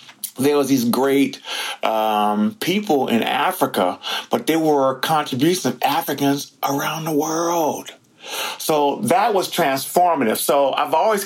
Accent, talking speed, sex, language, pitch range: American, 130 wpm, male, English, 125-170 Hz